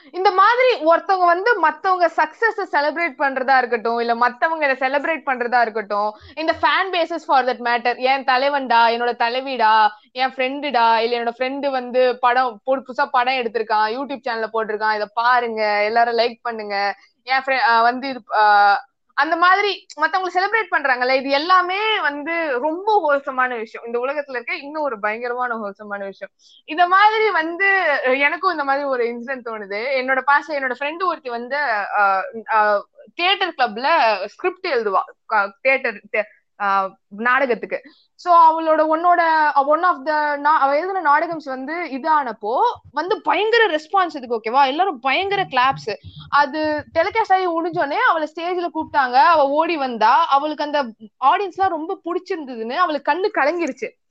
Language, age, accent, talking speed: Tamil, 20-39, native, 100 wpm